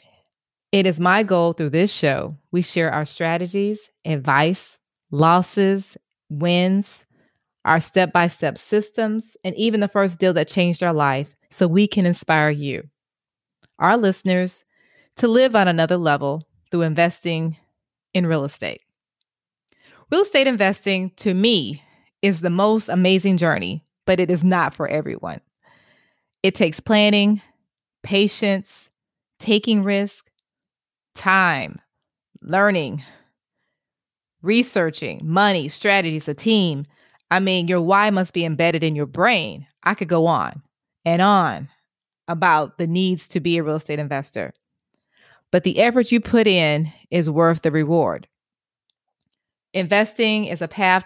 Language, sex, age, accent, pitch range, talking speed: English, female, 20-39, American, 160-200 Hz, 130 wpm